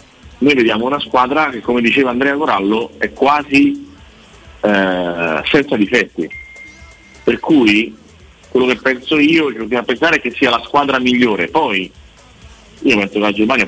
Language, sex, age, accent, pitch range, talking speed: Italian, male, 40-59, native, 100-135 Hz, 160 wpm